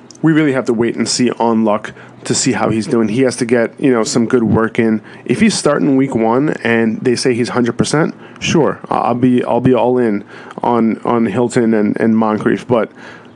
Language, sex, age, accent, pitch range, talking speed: English, male, 20-39, American, 115-135 Hz, 215 wpm